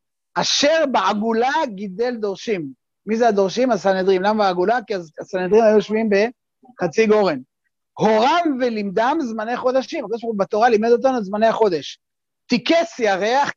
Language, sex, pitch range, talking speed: Hebrew, male, 205-270 Hz, 125 wpm